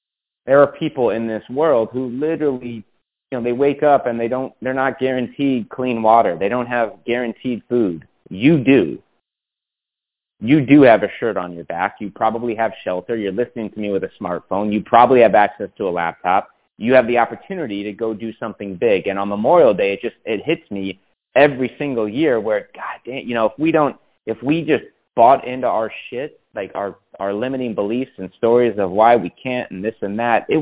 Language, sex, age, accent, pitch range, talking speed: English, male, 30-49, American, 105-130 Hz, 210 wpm